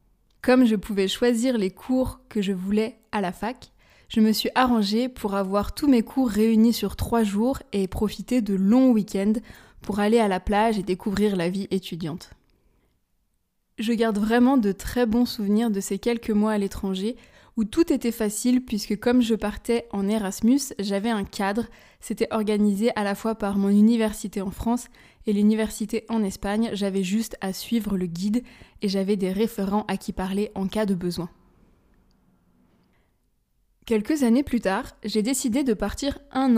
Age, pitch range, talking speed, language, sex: 20-39, 200-235 Hz, 175 wpm, French, female